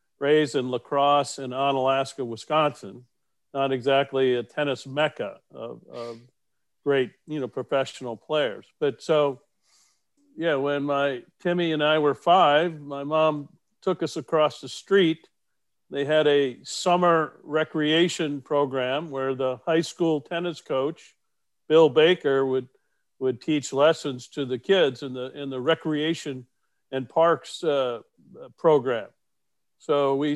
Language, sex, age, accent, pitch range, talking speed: English, male, 50-69, American, 135-155 Hz, 130 wpm